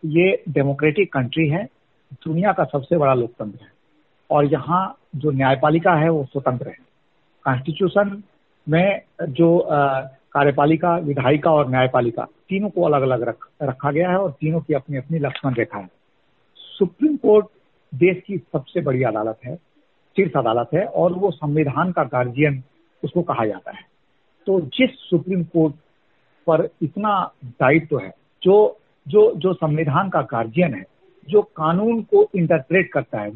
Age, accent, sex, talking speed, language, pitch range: 50-69, native, male, 150 wpm, Hindi, 140-180 Hz